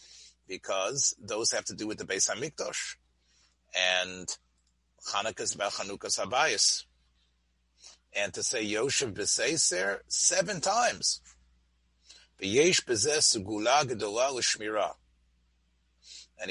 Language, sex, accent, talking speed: English, male, American, 100 wpm